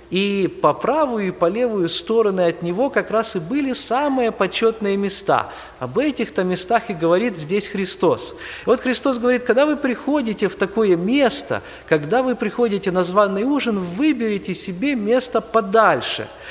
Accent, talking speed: native, 155 wpm